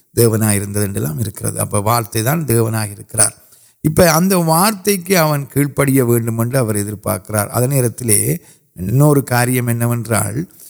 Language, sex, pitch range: Urdu, male, 115-150 Hz